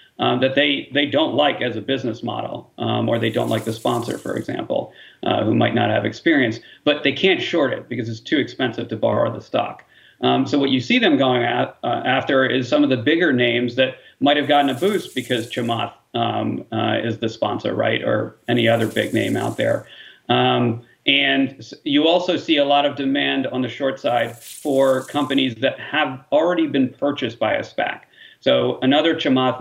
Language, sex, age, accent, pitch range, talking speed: English, male, 40-59, American, 120-140 Hz, 205 wpm